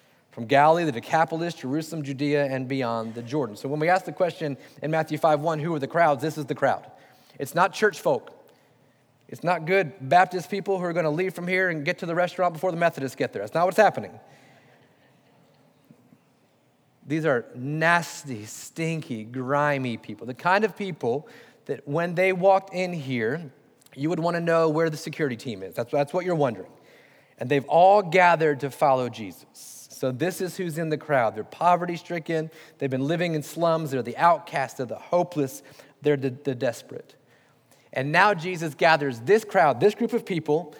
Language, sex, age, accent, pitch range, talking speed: English, male, 30-49, American, 140-175 Hz, 195 wpm